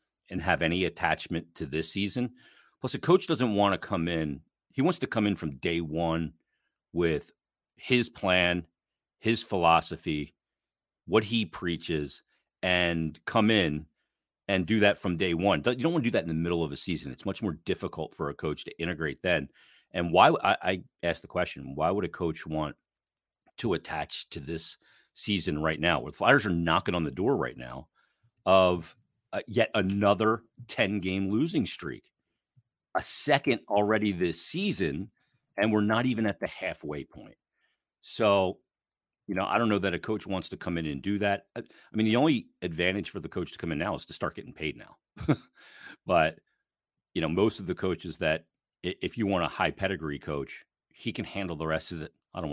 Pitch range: 80-105 Hz